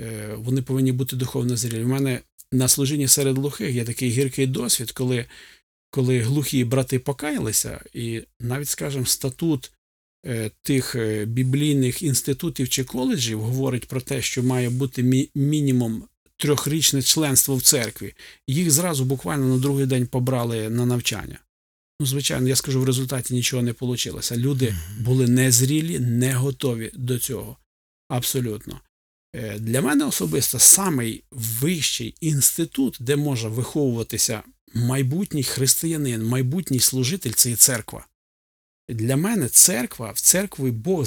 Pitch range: 120-140 Hz